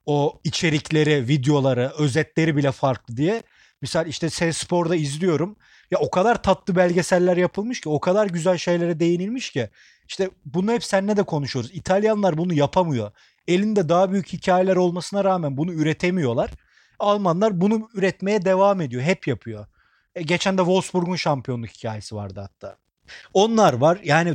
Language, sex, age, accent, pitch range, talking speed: Turkish, male, 40-59, native, 145-190 Hz, 145 wpm